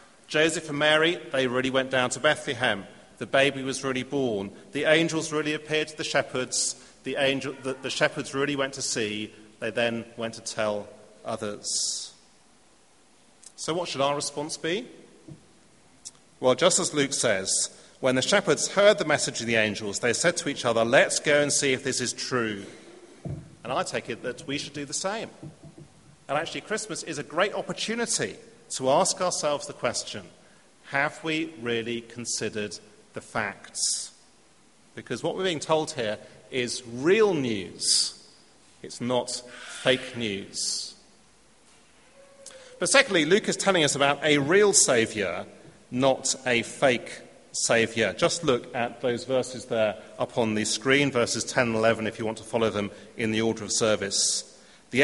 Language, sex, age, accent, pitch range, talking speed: English, male, 40-59, British, 115-155 Hz, 165 wpm